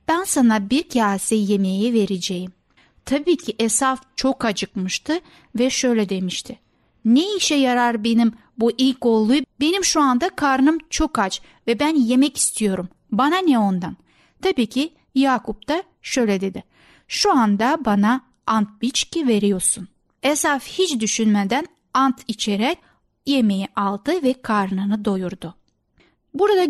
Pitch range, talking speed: 210-280 Hz, 125 wpm